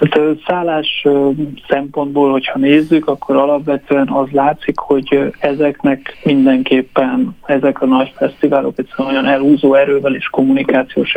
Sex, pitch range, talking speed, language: male, 135-165 Hz, 120 wpm, Hungarian